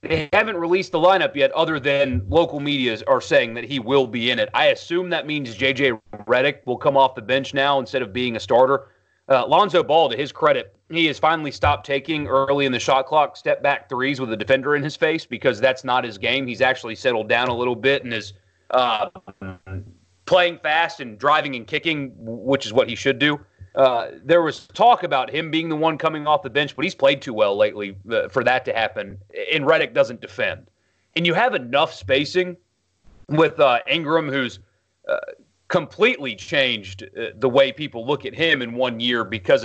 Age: 30-49